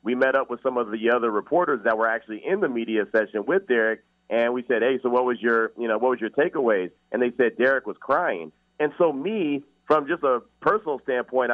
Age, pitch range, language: 40-59, 120-160 Hz, English